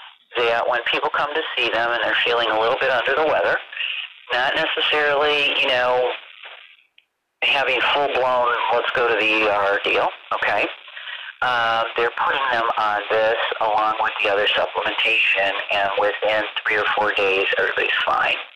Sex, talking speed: male, 155 wpm